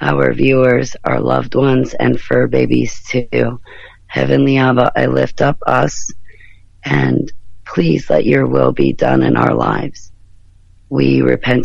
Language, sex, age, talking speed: English, female, 40-59, 140 wpm